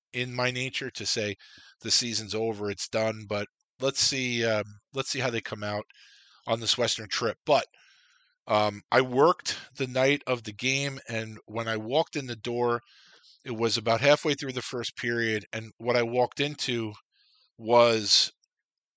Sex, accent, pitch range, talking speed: male, American, 105-125 Hz, 170 wpm